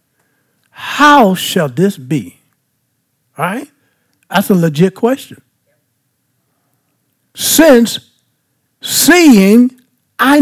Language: English